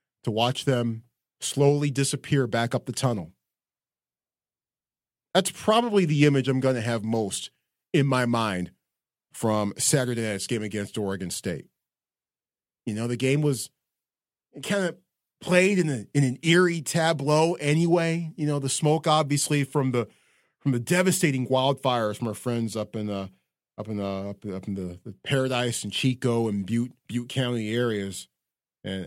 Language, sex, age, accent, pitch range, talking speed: English, male, 40-59, American, 110-145 Hz, 170 wpm